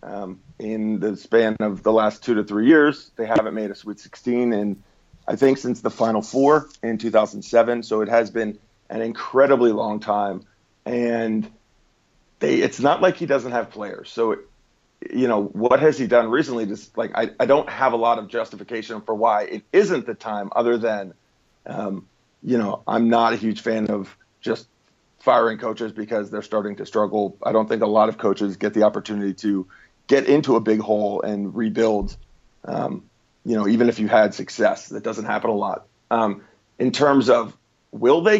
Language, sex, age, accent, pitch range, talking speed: English, male, 40-59, American, 105-120 Hz, 200 wpm